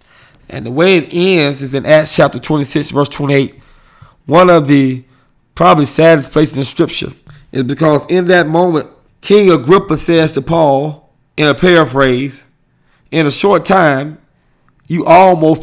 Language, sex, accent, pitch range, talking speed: English, male, American, 135-165 Hz, 150 wpm